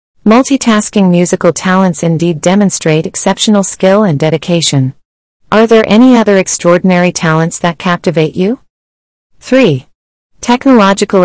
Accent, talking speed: American, 105 wpm